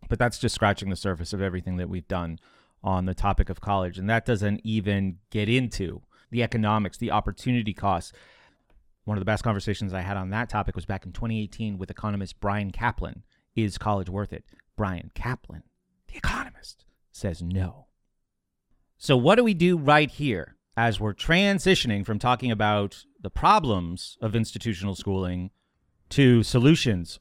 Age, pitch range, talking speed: 30-49, 100-125 Hz, 165 wpm